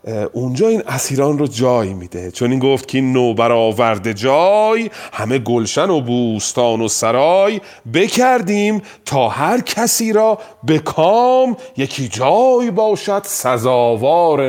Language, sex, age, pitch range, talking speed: Persian, male, 40-59, 125-215 Hz, 120 wpm